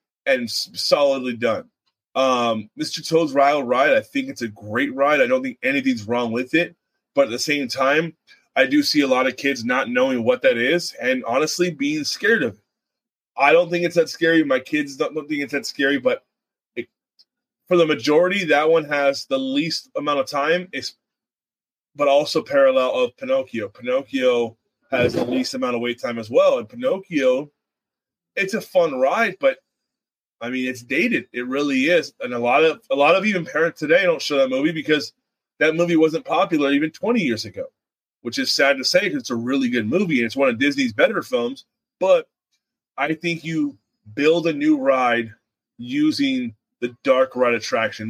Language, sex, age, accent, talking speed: English, male, 20-39, American, 190 wpm